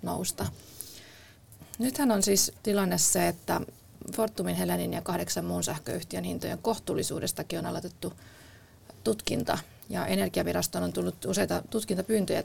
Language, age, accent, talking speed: Finnish, 30-49, native, 110 wpm